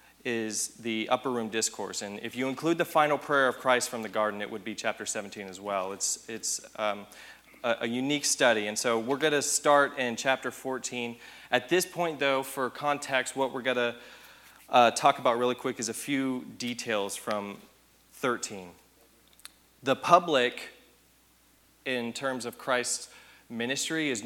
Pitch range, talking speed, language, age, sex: 105-130 Hz, 170 wpm, English, 30-49, male